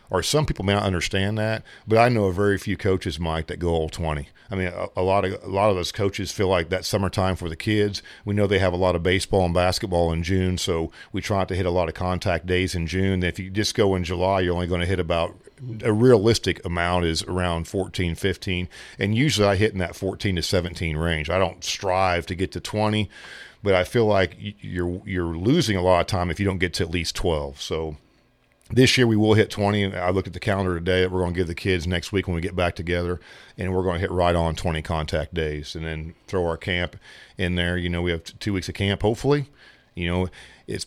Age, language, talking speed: 40-59, English, 260 wpm